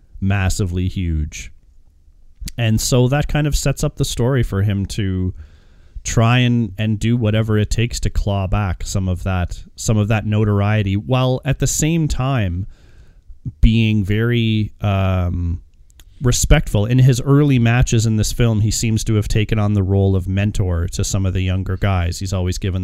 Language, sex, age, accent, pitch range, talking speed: English, male, 30-49, American, 95-115 Hz, 175 wpm